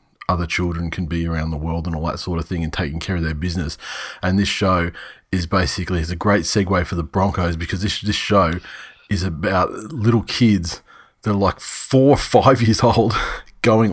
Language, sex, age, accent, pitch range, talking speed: English, male, 30-49, Australian, 90-110 Hz, 205 wpm